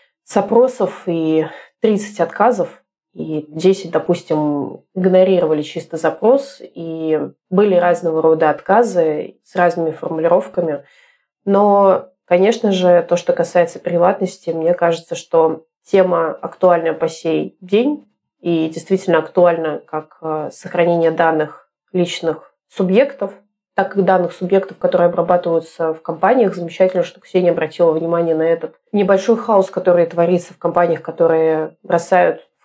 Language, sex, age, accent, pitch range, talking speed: Russian, female, 20-39, native, 165-185 Hz, 120 wpm